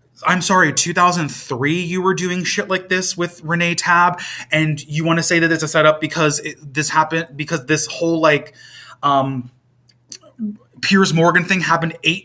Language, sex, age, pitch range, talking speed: English, male, 20-39, 125-175 Hz, 170 wpm